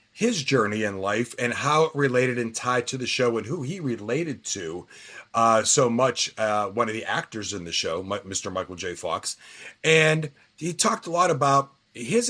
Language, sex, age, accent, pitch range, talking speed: English, male, 30-49, American, 115-145 Hz, 195 wpm